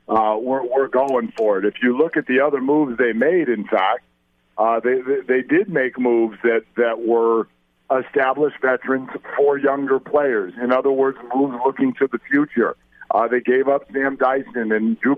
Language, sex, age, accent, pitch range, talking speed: English, male, 50-69, American, 120-140 Hz, 190 wpm